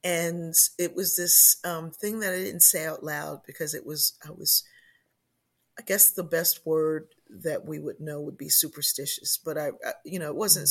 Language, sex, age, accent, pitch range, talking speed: English, female, 40-59, American, 150-175 Hz, 200 wpm